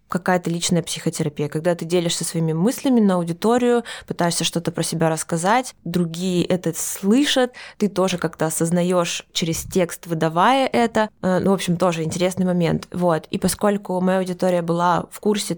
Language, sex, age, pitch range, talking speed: Russian, female, 20-39, 170-210 Hz, 155 wpm